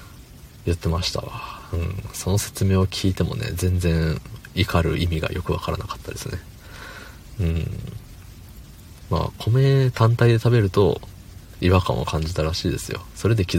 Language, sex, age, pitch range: Japanese, male, 40-59, 85-110 Hz